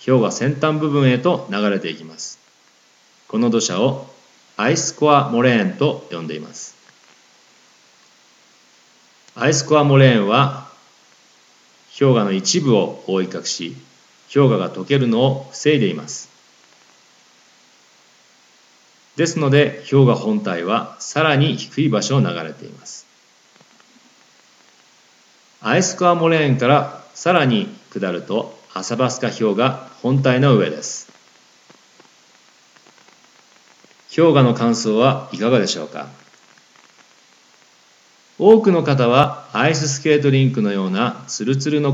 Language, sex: Japanese, male